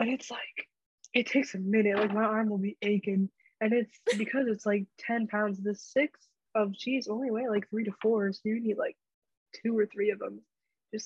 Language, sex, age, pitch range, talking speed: English, female, 20-39, 200-230 Hz, 215 wpm